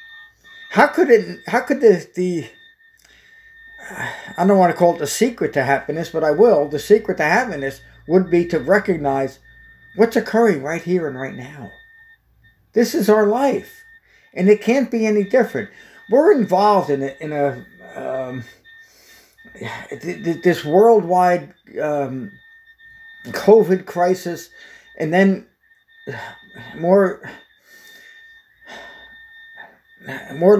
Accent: American